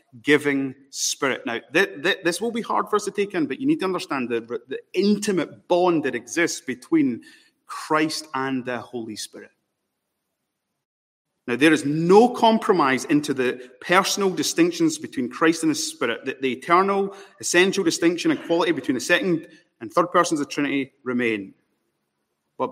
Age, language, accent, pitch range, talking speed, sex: 30-49, English, British, 125-195 Hz, 165 wpm, male